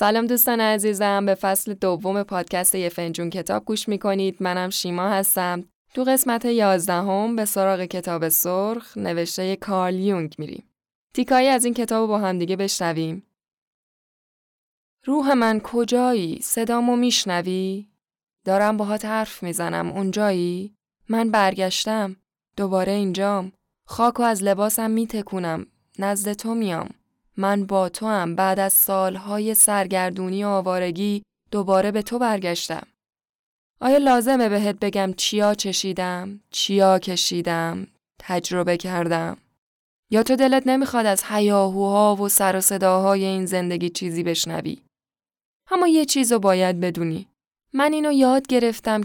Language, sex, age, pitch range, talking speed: Persian, female, 10-29, 185-225 Hz, 125 wpm